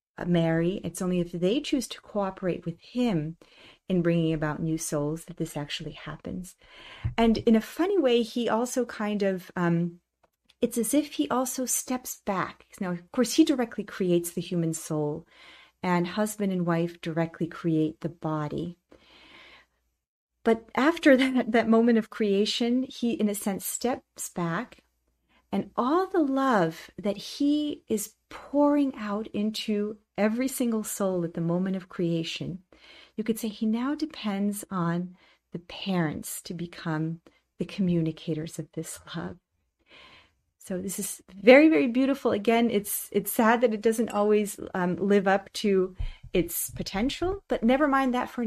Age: 40-59